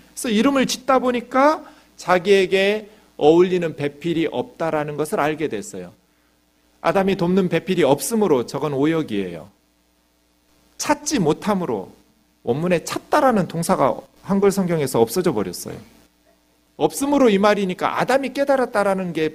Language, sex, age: Korean, male, 40-59